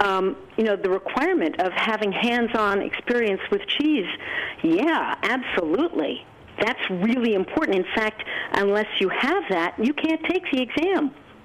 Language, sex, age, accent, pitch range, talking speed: English, female, 50-69, American, 195-295 Hz, 140 wpm